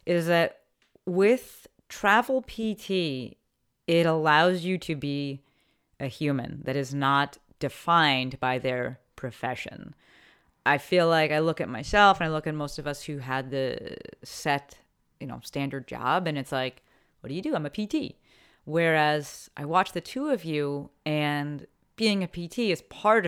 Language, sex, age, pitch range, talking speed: English, female, 30-49, 140-175 Hz, 165 wpm